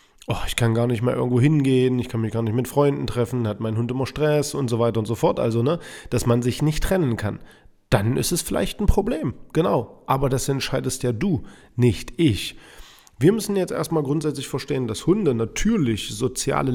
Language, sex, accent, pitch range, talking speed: German, male, German, 115-130 Hz, 210 wpm